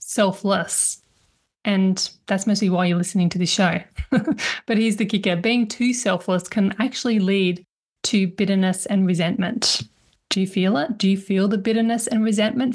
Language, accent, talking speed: English, Australian, 165 wpm